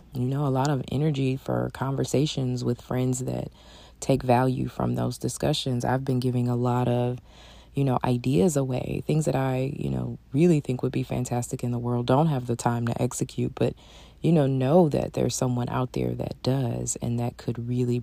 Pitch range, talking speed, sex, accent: 120-150 Hz, 200 wpm, female, American